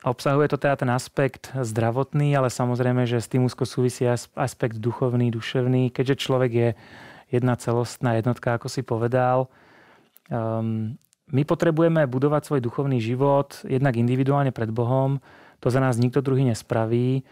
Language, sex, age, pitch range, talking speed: Czech, male, 30-49, 120-135 Hz, 145 wpm